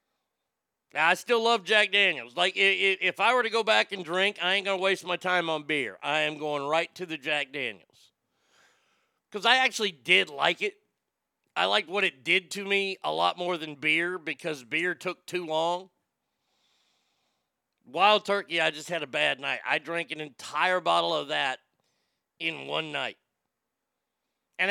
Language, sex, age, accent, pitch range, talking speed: English, male, 40-59, American, 155-190 Hz, 175 wpm